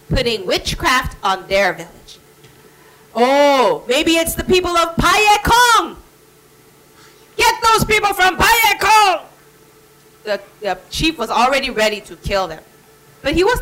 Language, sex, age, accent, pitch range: Korean, female, 30-49, American, 220-365 Hz